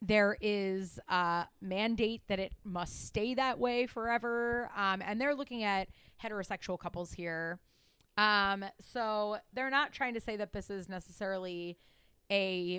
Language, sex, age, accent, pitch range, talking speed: English, female, 30-49, American, 190-235 Hz, 145 wpm